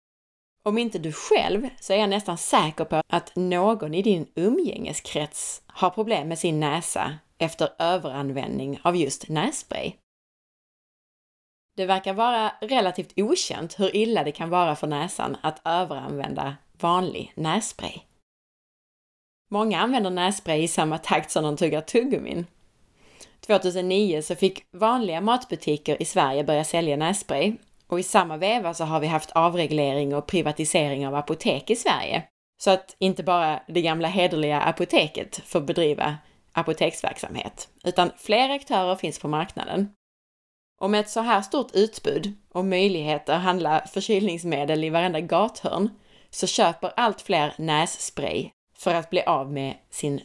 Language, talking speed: Swedish, 140 wpm